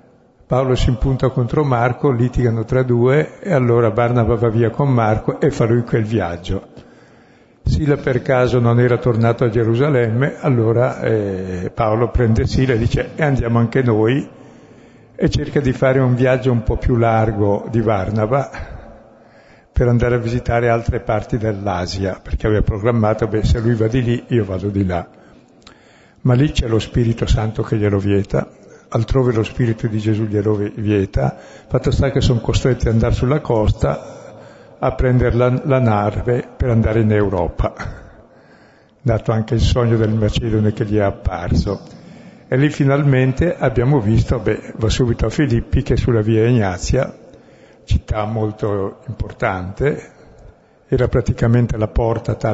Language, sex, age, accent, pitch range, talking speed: Italian, male, 60-79, native, 110-125 Hz, 155 wpm